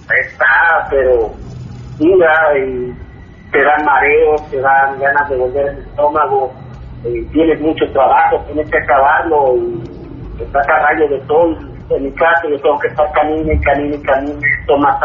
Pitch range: 140-185 Hz